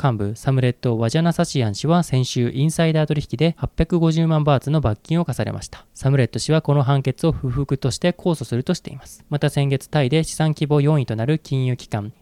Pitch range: 125-160 Hz